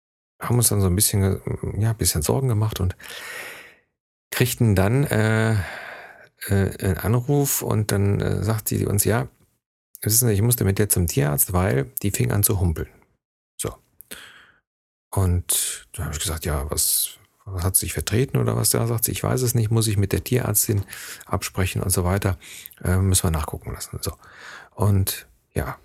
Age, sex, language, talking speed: 40-59, male, German, 180 wpm